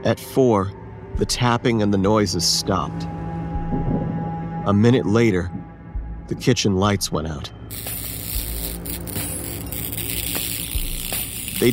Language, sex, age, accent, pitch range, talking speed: English, male, 40-59, American, 95-115 Hz, 85 wpm